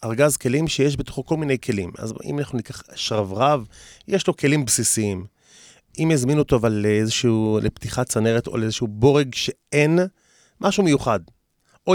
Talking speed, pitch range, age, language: 150 wpm, 105-135 Hz, 30-49, Hebrew